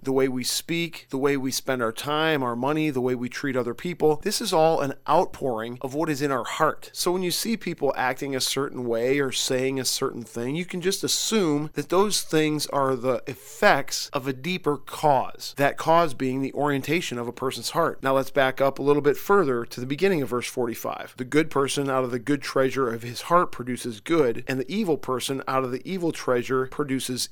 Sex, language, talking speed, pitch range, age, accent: male, English, 225 wpm, 130-155 Hz, 40-59, American